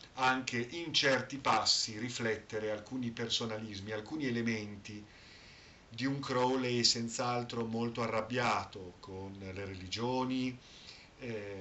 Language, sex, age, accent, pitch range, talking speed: Italian, male, 50-69, native, 105-125 Hz, 95 wpm